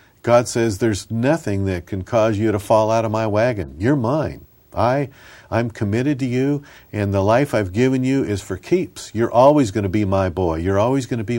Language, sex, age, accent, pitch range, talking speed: English, male, 50-69, American, 100-120 Hz, 240 wpm